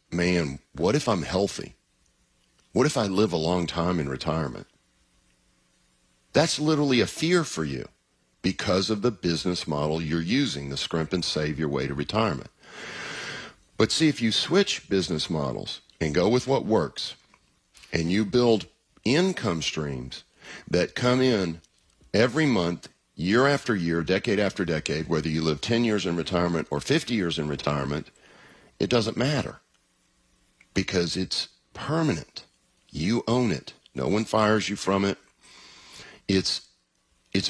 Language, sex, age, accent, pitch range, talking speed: English, male, 50-69, American, 80-110 Hz, 145 wpm